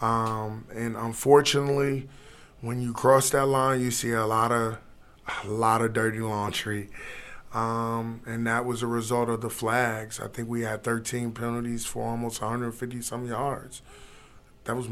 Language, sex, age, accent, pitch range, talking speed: English, male, 20-39, American, 115-125 Hz, 155 wpm